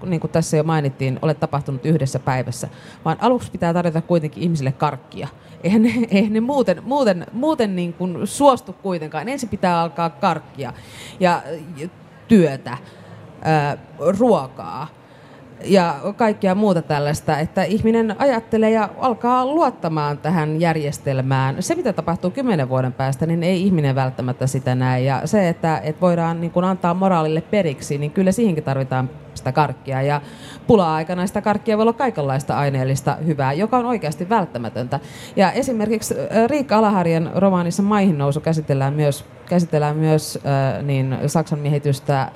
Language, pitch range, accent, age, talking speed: Finnish, 145-195 Hz, native, 30-49, 140 wpm